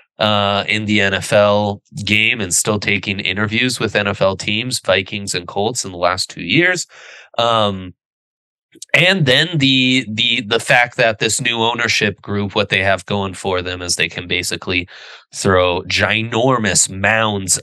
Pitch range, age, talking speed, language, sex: 90-110 Hz, 20-39, 155 wpm, English, male